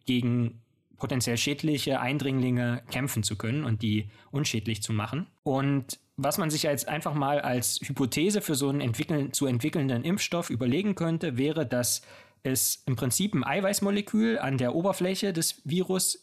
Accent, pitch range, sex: German, 120-160 Hz, male